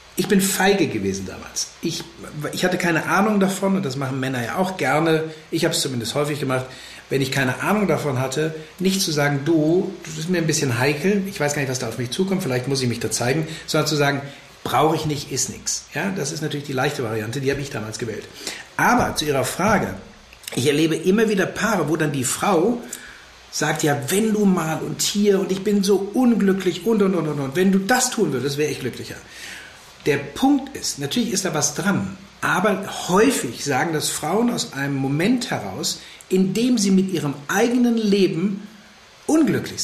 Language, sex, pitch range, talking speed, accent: German, male, 140-195 Hz, 210 wpm, German